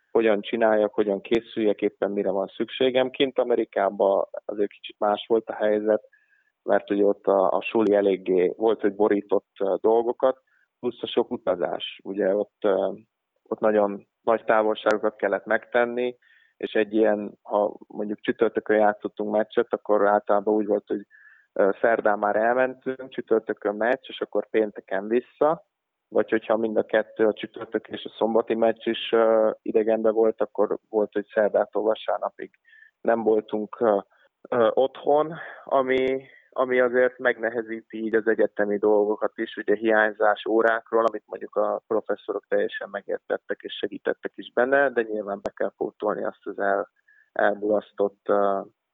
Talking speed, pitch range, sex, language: 140 wpm, 105-125 Hz, male, Hungarian